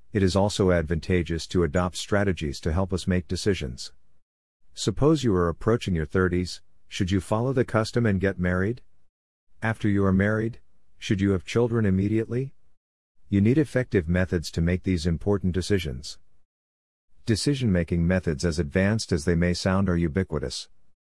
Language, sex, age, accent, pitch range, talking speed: English, male, 50-69, American, 85-105 Hz, 155 wpm